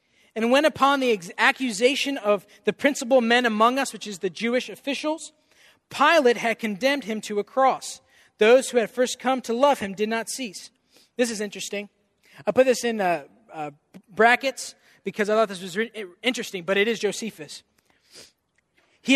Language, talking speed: English, 170 wpm